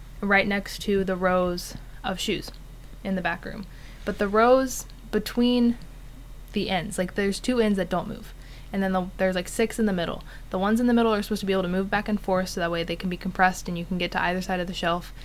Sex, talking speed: female, 250 wpm